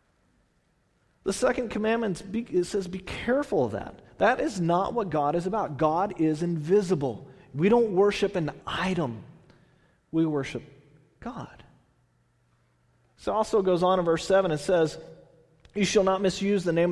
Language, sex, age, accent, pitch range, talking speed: English, male, 40-59, American, 130-195 Hz, 150 wpm